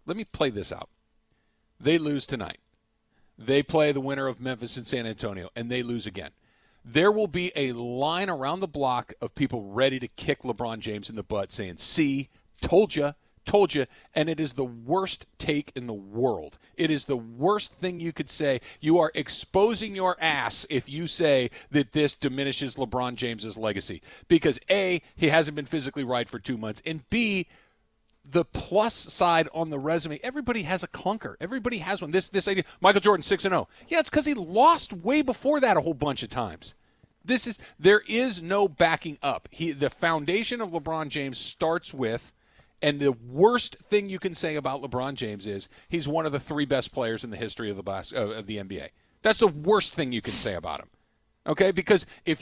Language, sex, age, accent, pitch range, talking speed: English, male, 40-59, American, 125-190 Hz, 200 wpm